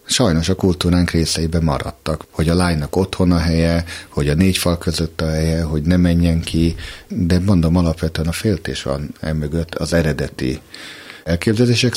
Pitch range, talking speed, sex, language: 80-95 Hz, 160 wpm, male, Hungarian